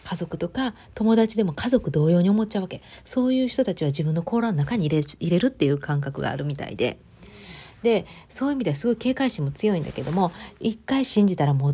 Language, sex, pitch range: Japanese, female, 145-210 Hz